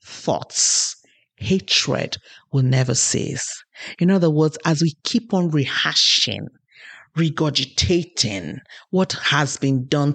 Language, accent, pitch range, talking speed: English, Nigerian, 140-170 Hz, 105 wpm